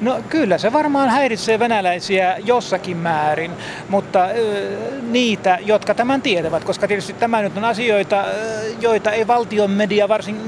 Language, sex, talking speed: Finnish, male, 135 wpm